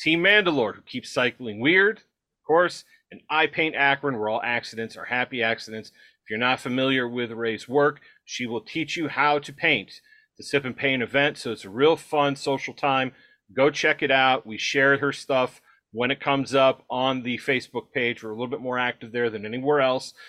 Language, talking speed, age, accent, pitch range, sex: English, 205 wpm, 40-59, American, 120-140 Hz, male